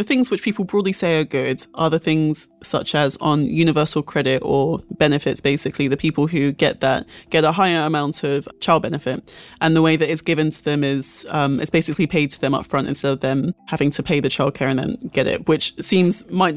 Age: 20-39